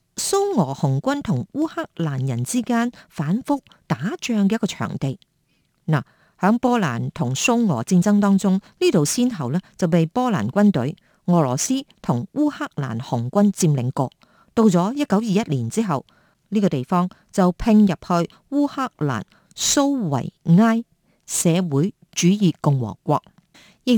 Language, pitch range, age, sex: Chinese, 150-220 Hz, 50-69, female